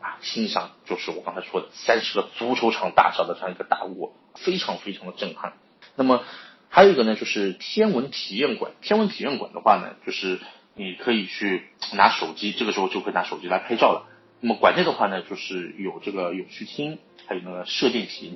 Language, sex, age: Chinese, male, 30-49